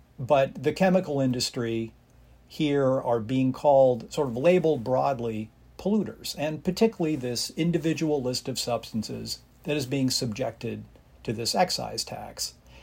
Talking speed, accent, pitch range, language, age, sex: 130 wpm, American, 120-150 Hz, English, 50-69, male